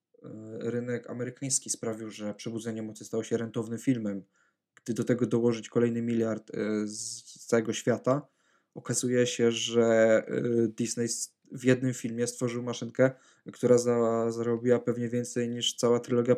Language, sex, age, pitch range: Polish, male, 20-39, 115-125 Hz